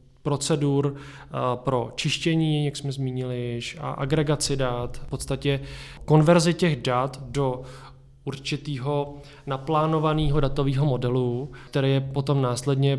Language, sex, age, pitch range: Czech, male, 20-39, 125-140 Hz